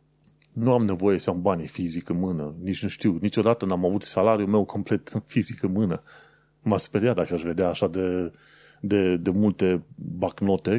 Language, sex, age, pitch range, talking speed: Romanian, male, 30-49, 95-130 Hz, 180 wpm